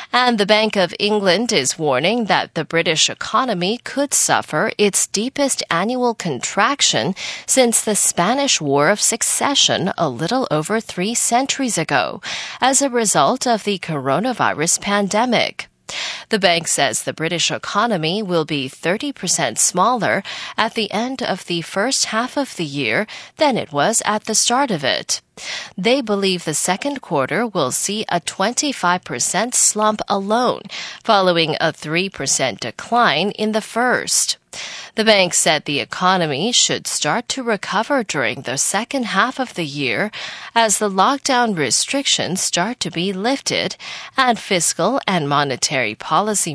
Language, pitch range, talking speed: English, 170-240 Hz, 145 wpm